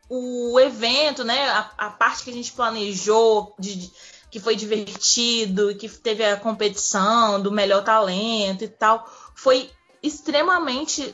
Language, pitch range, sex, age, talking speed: Portuguese, 215-250 Hz, female, 20-39, 140 wpm